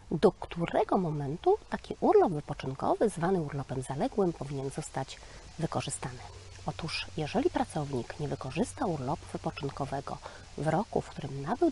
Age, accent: 30-49, native